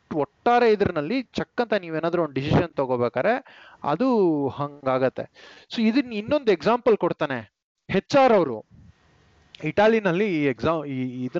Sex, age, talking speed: male, 30-49, 100 wpm